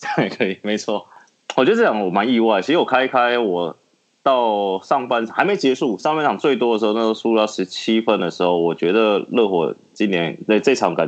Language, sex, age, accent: Chinese, male, 20-39, native